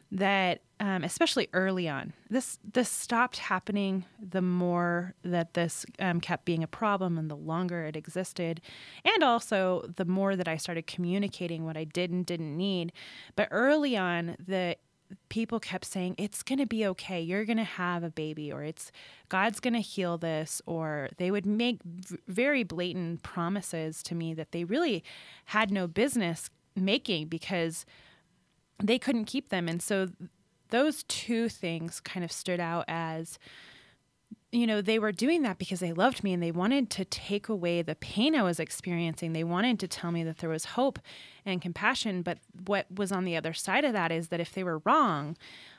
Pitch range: 170-220 Hz